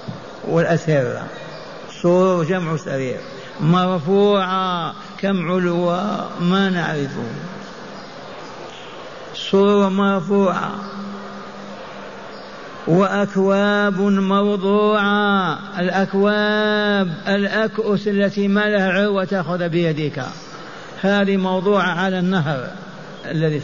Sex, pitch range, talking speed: male, 170-200 Hz, 65 wpm